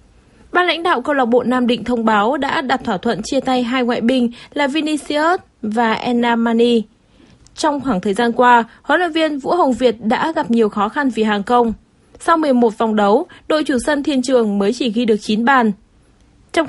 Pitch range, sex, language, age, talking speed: 230-280 Hz, female, Vietnamese, 20-39, 210 wpm